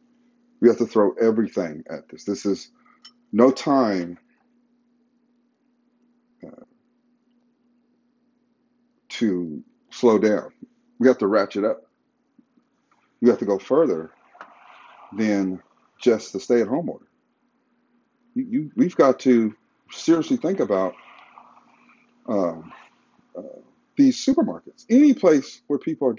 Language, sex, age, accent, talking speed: English, male, 40-59, American, 110 wpm